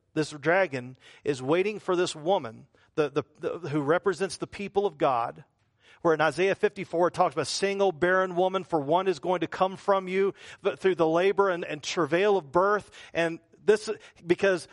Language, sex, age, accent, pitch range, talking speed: English, male, 40-59, American, 145-225 Hz, 190 wpm